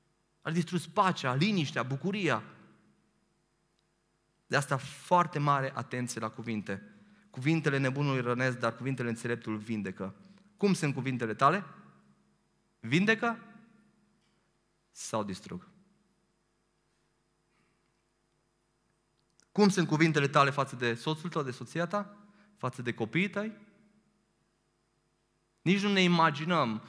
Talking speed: 100 wpm